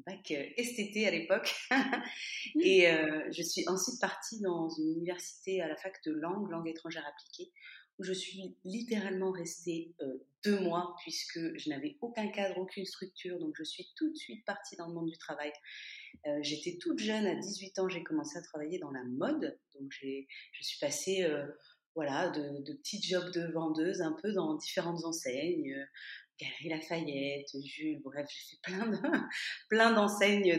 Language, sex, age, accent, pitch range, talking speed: French, female, 30-49, French, 160-215 Hz, 180 wpm